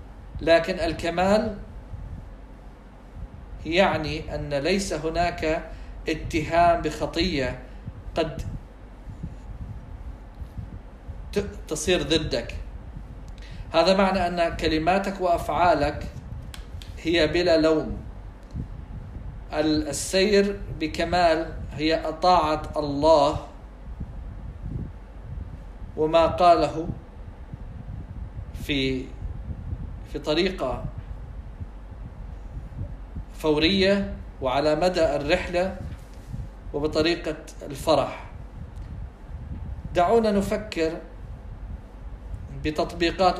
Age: 50-69